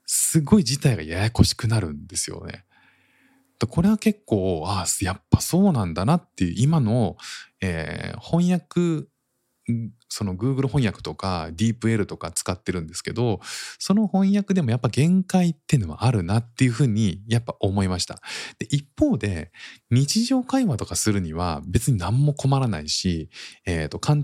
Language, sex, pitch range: Japanese, male, 90-140 Hz